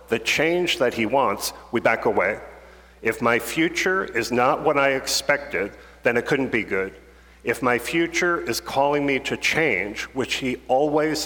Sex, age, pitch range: male, 50-69, 95-150 Hz